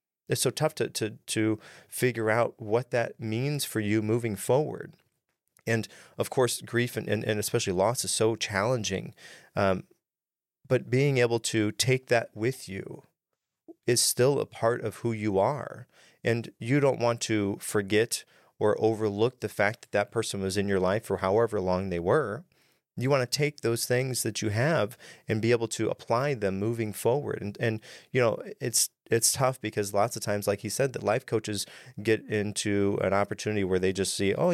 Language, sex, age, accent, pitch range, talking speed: English, male, 30-49, American, 105-125 Hz, 190 wpm